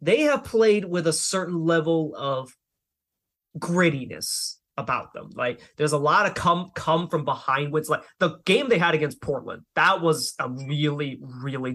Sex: male